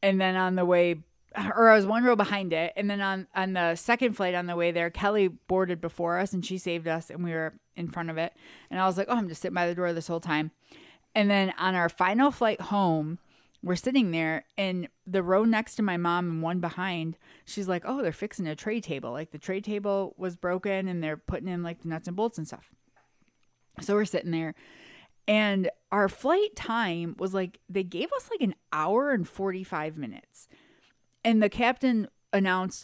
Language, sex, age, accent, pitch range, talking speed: English, female, 20-39, American, 170-215 Hz, 220 wpm